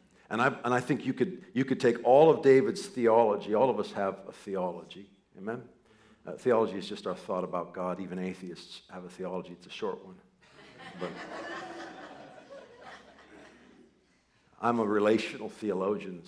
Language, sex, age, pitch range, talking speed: English, male, 50-69, 90-110 Hz, 160 wpm